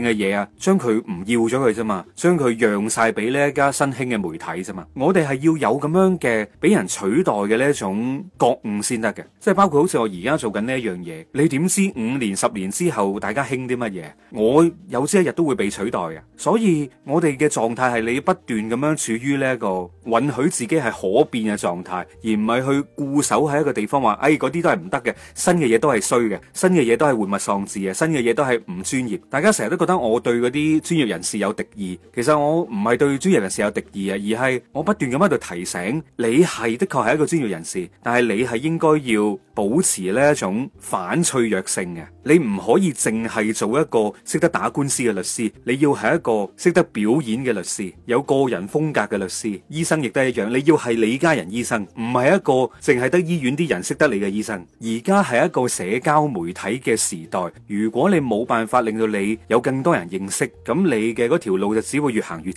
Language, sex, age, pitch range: Chinese, male, 30-49, 110-160 Hz